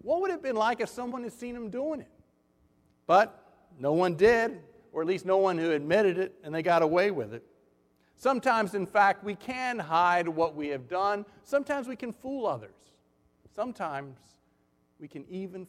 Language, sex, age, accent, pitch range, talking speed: English, male, 50-69, American, 135-195 Hz, 190 wpm